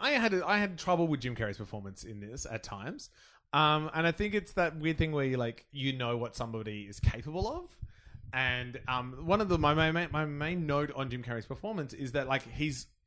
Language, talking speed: English, 225 wpm